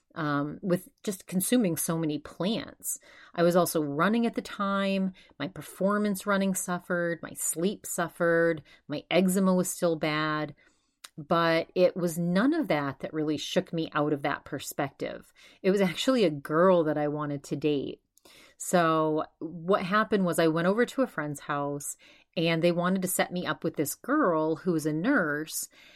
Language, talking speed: English, 175 wpm